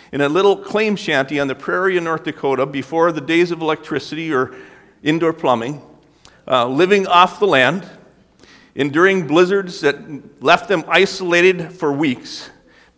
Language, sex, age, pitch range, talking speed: English, male, 50-69, 130-180 Hz, 150 wpm